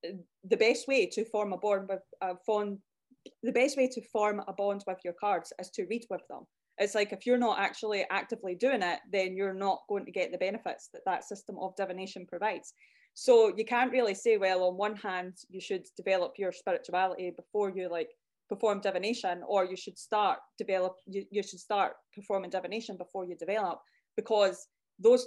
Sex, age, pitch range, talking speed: female, 20-39, 185-215 Hz, 195 wpm